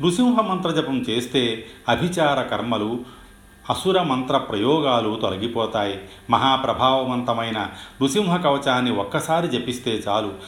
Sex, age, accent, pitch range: male, 40-59, native, 100-135 Hz